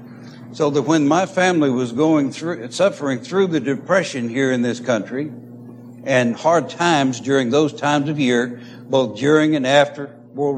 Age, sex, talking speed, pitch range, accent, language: 60-79, male, 165 wpm, 120-155 Hz, American, English